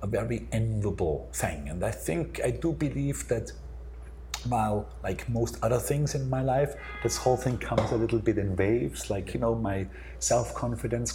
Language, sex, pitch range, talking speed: Finnish, male, 75-115 Hz, 180 wpm